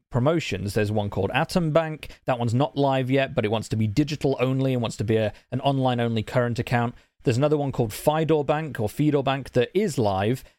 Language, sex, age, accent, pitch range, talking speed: English, male, 30-49, British, 110-135 Hz, 225 wpm